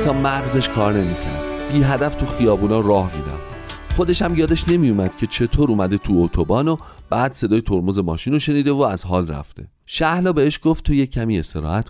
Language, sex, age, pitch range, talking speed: Persian, male, 40-59, 85-135 Hz, 180 wpm